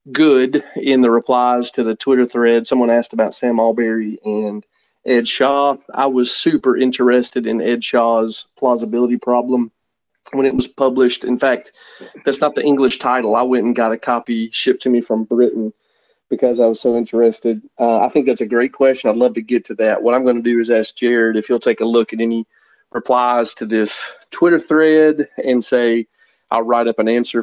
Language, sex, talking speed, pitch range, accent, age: English, male, 205 wpm, 115-125 Hz, American, 30-49